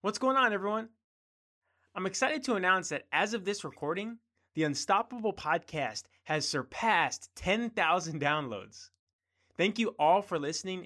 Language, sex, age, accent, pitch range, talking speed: English, male, 20-39, American, 115-165 Hz, 140 wpm